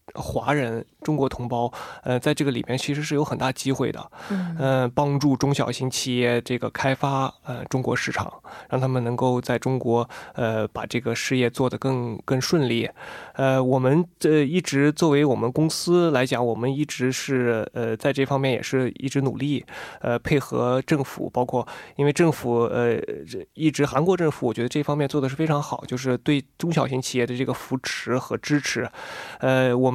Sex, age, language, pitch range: male, 20-39, Korean, 125-145 Hz